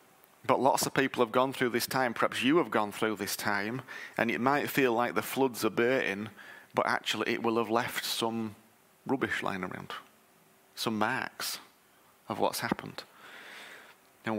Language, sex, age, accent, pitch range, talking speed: English, male, 30-49, British, 105-125 Hz, 170 wpm